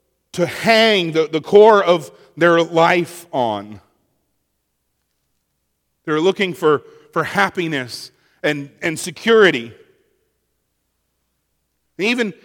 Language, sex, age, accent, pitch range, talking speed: English, male, 40-59, American, 130-200 Hz, 85 wpm